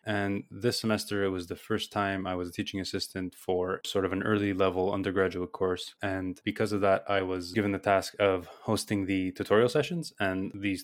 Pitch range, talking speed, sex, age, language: 90-100 Hz, 205 wpm, male, 20-39, English